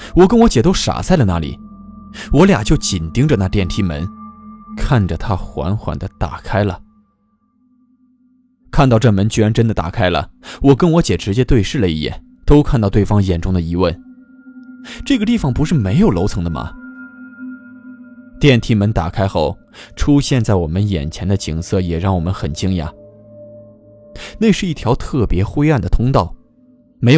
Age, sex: 20-39, male